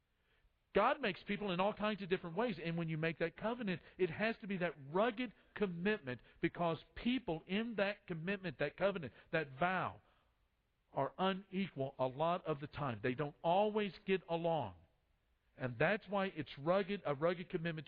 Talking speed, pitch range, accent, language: 170 wpm, 155-200 Hz, American, English